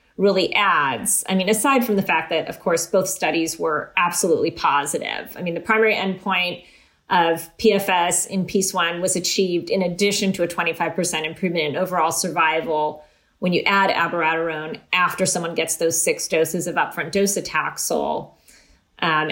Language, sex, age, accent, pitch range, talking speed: English, female, 30-49, American, 170-215 Hz, 160 wpm